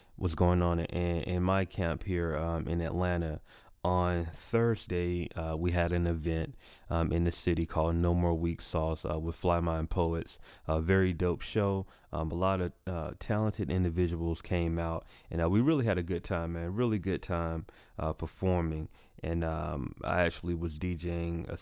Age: 30-49